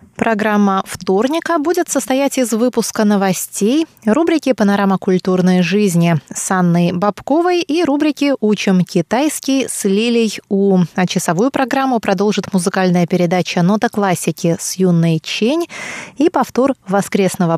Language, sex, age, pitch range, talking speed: Russian, female, 20-39, 190-245 Hz, 120 wpm